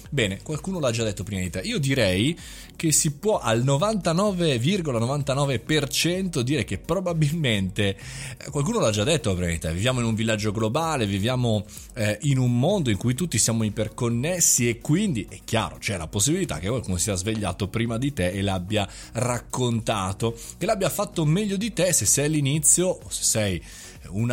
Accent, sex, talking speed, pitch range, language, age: native, male, 170 wpm, 100-150 Hz, Italian, 30-49